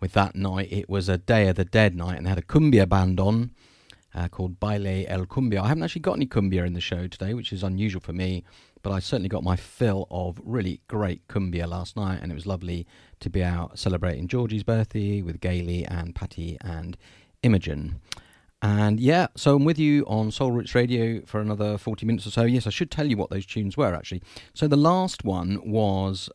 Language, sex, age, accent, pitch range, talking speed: English, male, 40-59, British, 95-115 Hz, 220 wpm